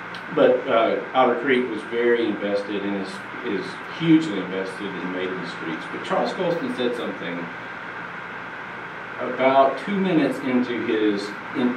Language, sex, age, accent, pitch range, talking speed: English, male, 50-69, American, 95-125 Hz, 140 wpm